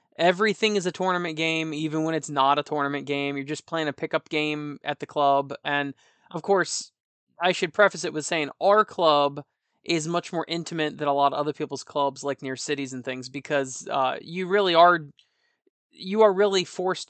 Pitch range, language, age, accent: 145-180 Hz, English, 20-39, American